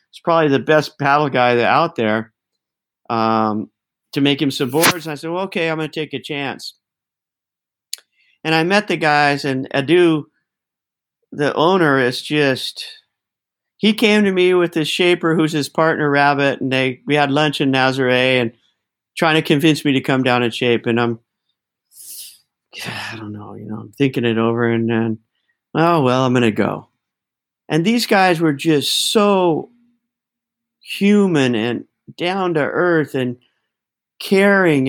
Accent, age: American, 50-69